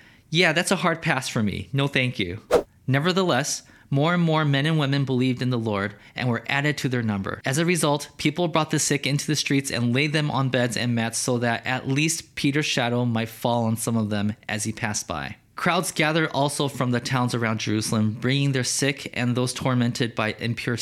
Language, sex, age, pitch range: English, male, 20-39, 125-160 Hz